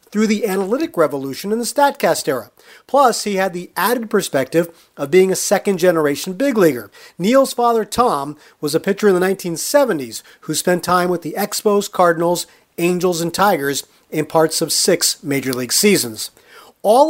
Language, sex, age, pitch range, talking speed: English, male, 40-59, 160-235 Hz, 165 wpm